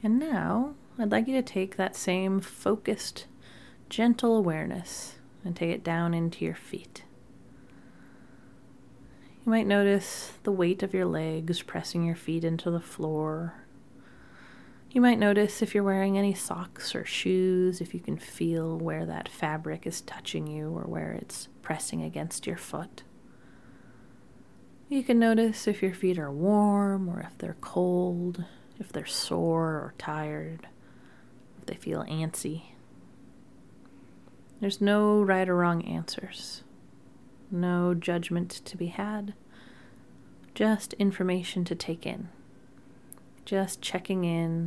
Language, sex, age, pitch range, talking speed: English, female, 30-49, 165-205 Hz, 135 wpm